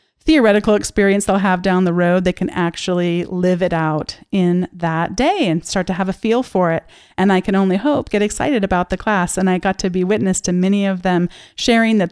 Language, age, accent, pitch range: English, 30-49, American, 175-210 Hz